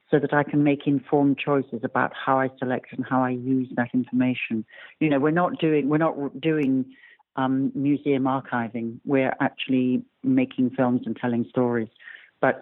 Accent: British